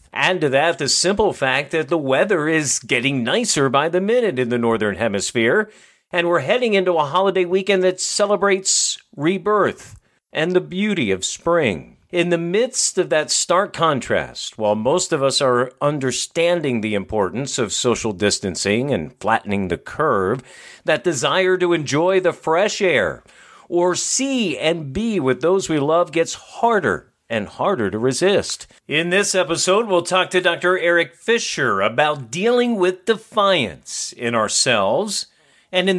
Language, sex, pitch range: English, male, 130-185 Hz